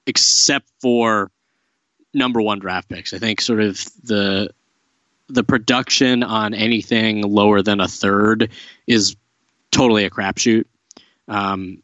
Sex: male